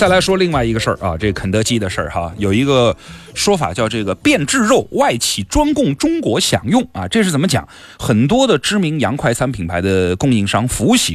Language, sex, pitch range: Chinese, male, 100-160 Hz